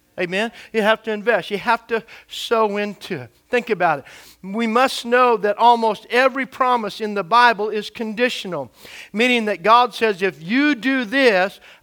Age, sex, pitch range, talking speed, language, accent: 50-69, male, 210-245 Hz, 170 wpm, English, American